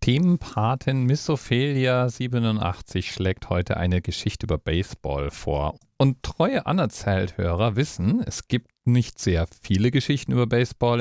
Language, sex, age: German, male, 40-59